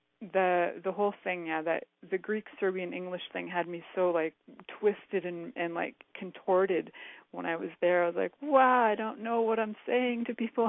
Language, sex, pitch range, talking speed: English, female, 170-220 Hz, 200 wpm